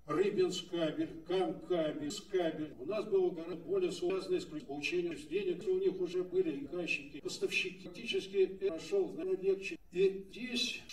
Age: 70-89